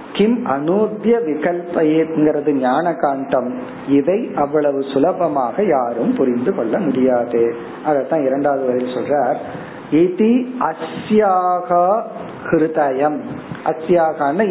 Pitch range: 135-185 Hz